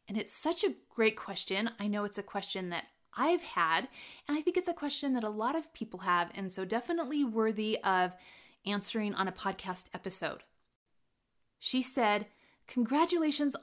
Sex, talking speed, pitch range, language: female, 170 wpm, 195-275 Hz, English